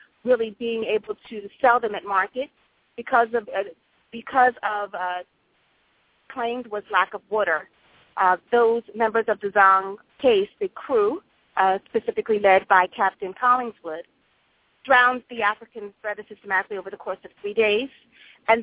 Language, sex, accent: English, female, American